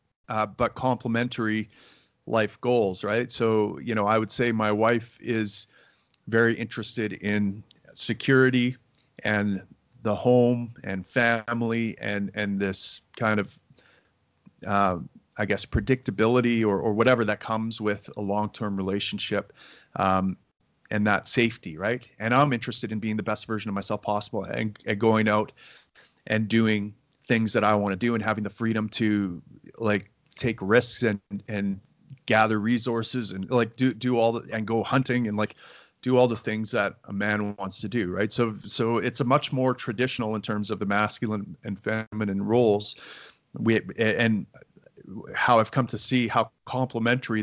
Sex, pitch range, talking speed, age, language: male, 105-120 Hz, 160 wpm, 40-59, English